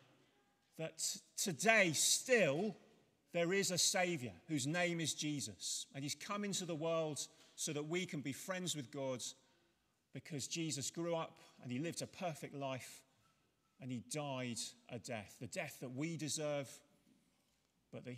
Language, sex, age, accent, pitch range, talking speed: English, male, 40-59, British, 125-180 Hz, 155 wpm